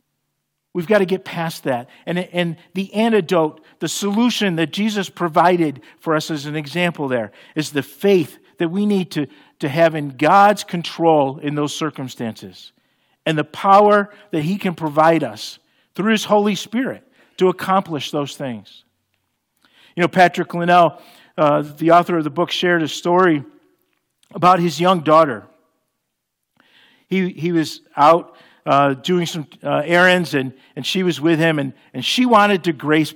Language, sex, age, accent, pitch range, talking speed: English, male, 50-69, American, 150-190 Hz, 165 wpm